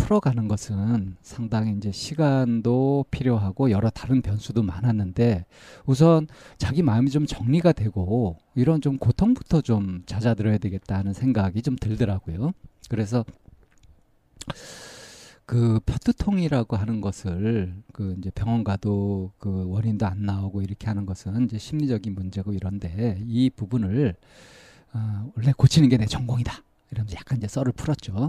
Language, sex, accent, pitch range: Korean, male, native, 100-130 Hz